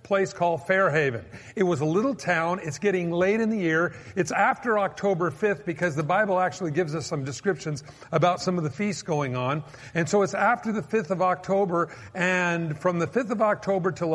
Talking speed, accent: 205 wpm, American